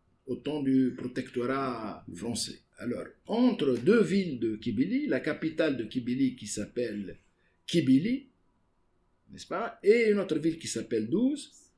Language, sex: English, male